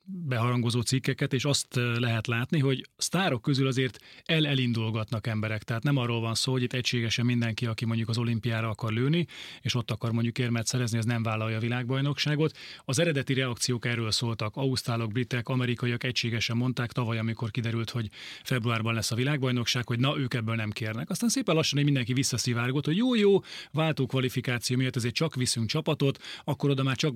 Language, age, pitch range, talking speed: Hungarian, 30-49, 120-140 Hz, 180 wpm